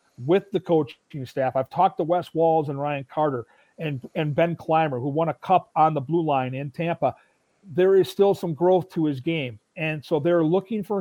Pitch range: 150-195 Hz